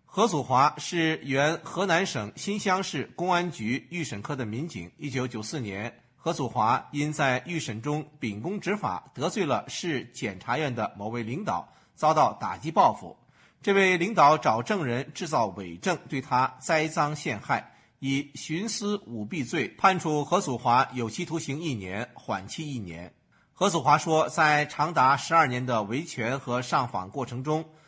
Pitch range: 125-165 Hz